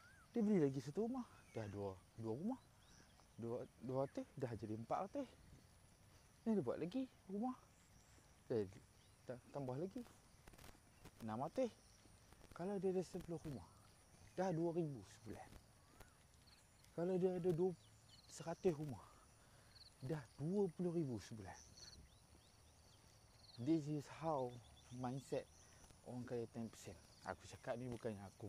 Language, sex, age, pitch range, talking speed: Malay, male, 30-49, 110-150 Hz, 120 wpm